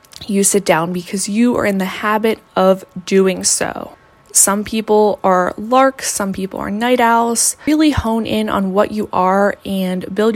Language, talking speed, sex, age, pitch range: English, 175 wpm, female, 20-39, 195-235 Hz